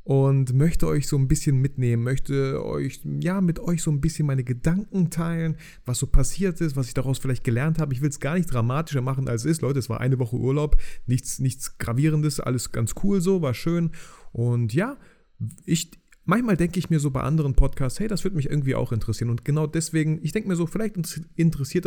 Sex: male